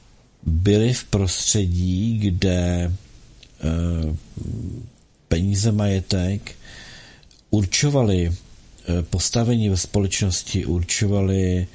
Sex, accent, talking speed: male, native, 55 wpm